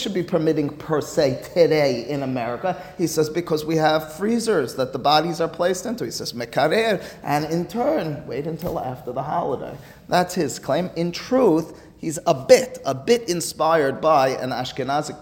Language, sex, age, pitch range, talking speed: English, male, 30-49, 120-165 Hz, 175 wpm